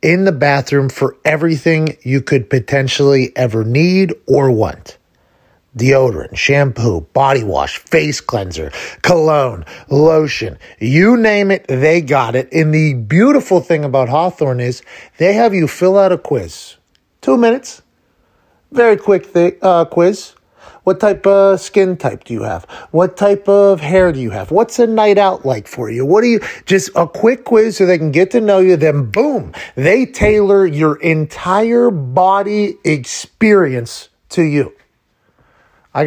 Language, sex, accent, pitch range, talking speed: English, male, American, 140-200 Hz, 155 wpm